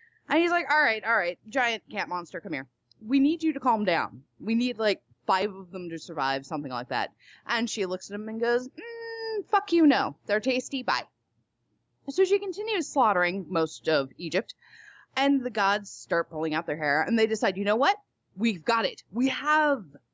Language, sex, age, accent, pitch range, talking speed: English, female, 20-39, American, 170-285 Hz, 205 wpm